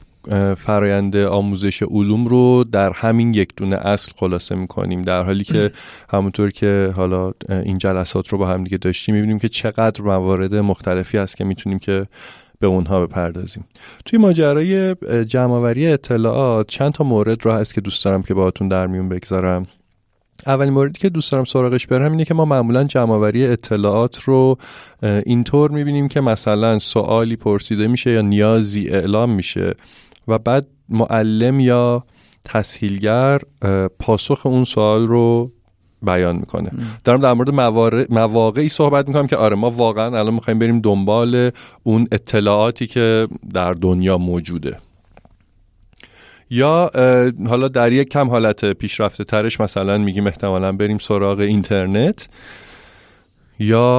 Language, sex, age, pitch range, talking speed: Persian, male, 30-49, 95-120 Hz, 140 wpm